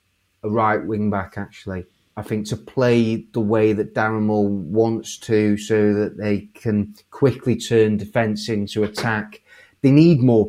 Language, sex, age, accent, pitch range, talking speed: English, male, 30-49, British, 105-125 Hz, 160 wpm